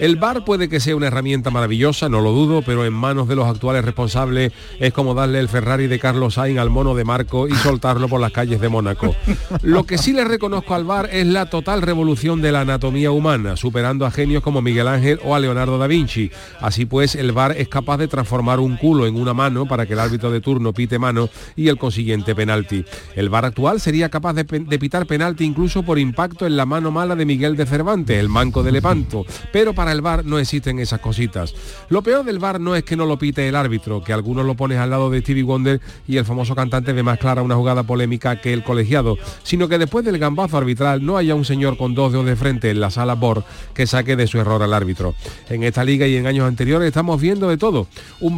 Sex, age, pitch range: male, 40-59, 125-150 Hz